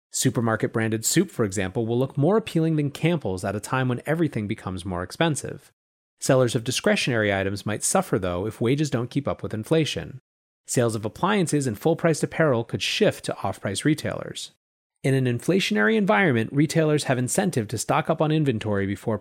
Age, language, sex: 30-49, English, male